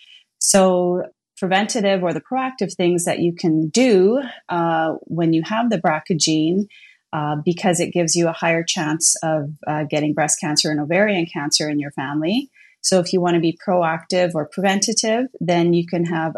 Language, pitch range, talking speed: English, 160-190 Hz, 180 wpm